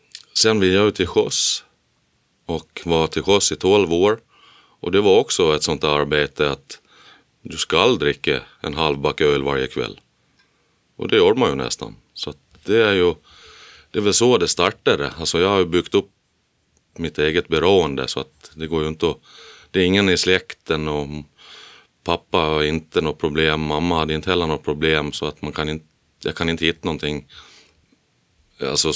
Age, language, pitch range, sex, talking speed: 30-49, Swedish, 80-95 Hz, male, 185 wpm